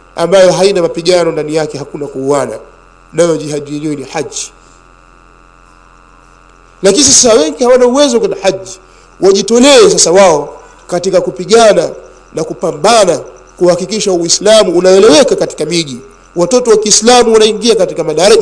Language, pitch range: Swahili, 150-225 Hz